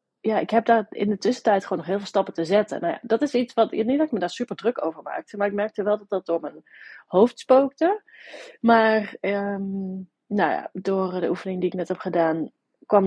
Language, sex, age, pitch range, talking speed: Dutch, female, 30-49, 195-250 Hz, 240 wpm